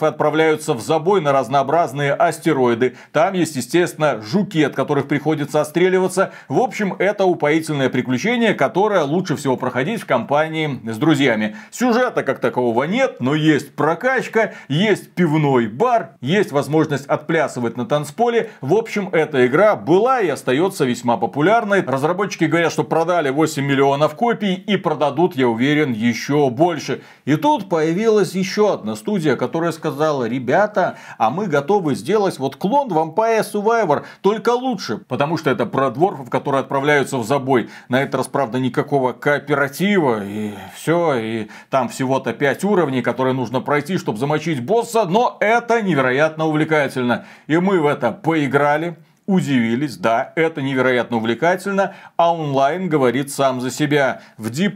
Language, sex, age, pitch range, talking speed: Russian, male, 40-59, 135-180 Hz, 145 wpm